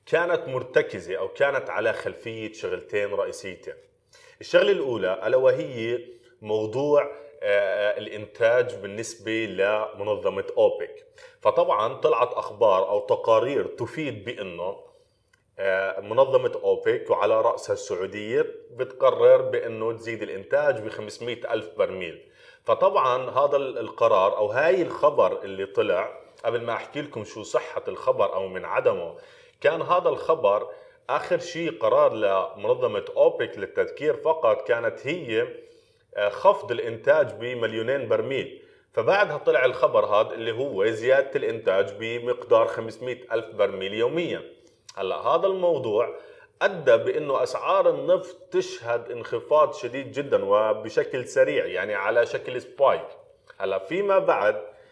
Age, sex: 30-49, male